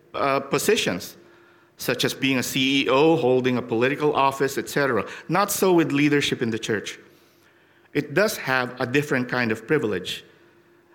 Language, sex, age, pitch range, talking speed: English, male, 50-69, 110-145 Hz, 150 wpm